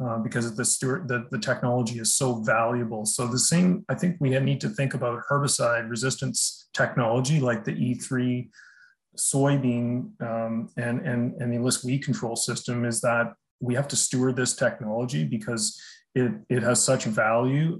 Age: 30-49